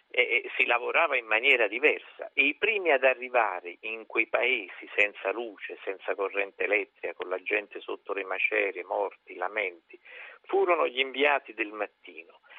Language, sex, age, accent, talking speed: Italian, male, 50-69, native, 155 wpm